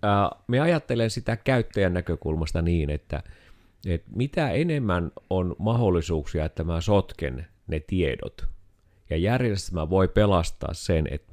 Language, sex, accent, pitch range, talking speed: Finnish, male, native, 85-105 Hz, 120 wpm